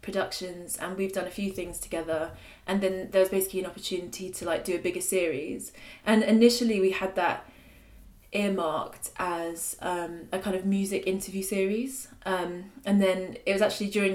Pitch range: 180-200 Hz